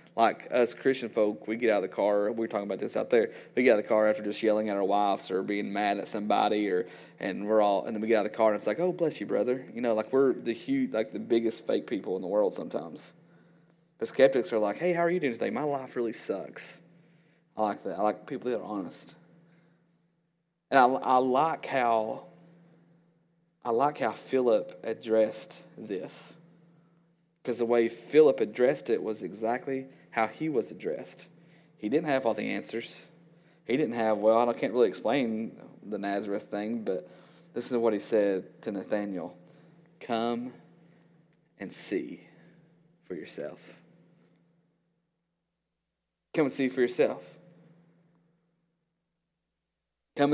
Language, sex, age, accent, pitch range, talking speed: English, male, 30-49, American, 110-170 Hz, 180 wpm